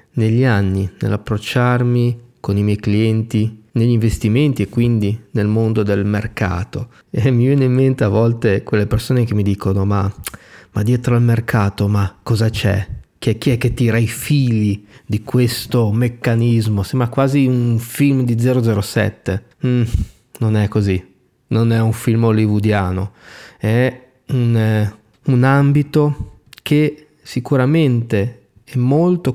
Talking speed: 135 wpm